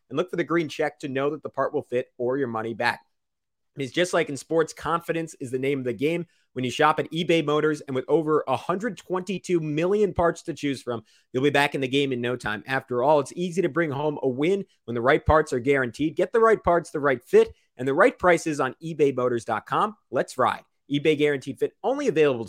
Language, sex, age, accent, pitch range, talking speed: English, male, 30-49, American, 125-160 Hz, 235 wpm